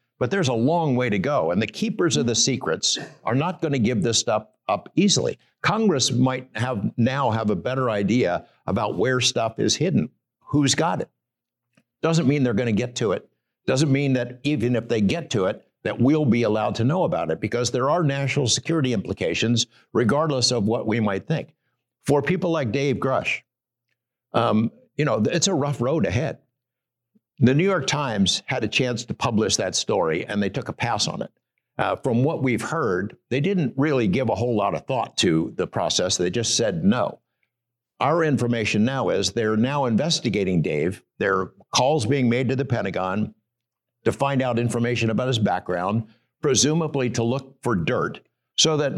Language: English